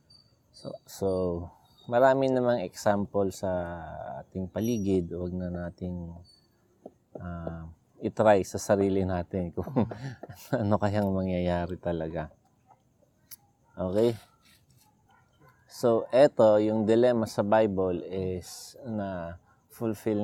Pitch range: 95-115 Hz